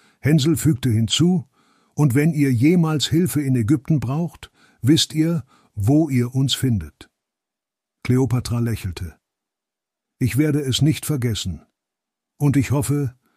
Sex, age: male, 60-79